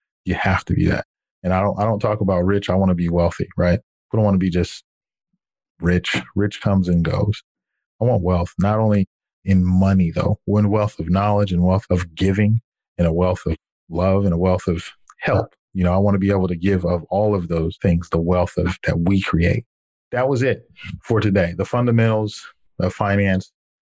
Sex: male